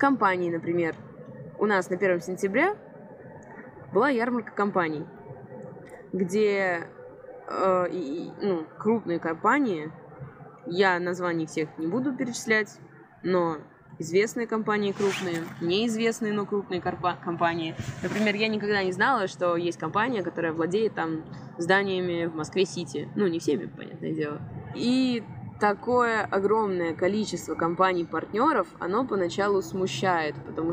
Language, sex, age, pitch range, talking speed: Russian, female, 20-39, 170-225 Hz, 110 wpm